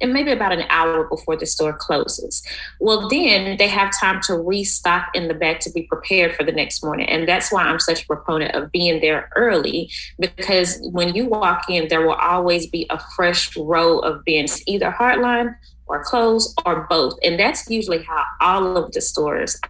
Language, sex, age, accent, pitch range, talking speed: English, female, 20-39, American, 165-220 Hz, 200 wpm